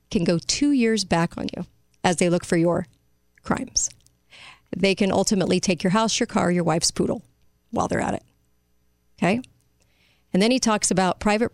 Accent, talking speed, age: American, 180 wpm, 40-59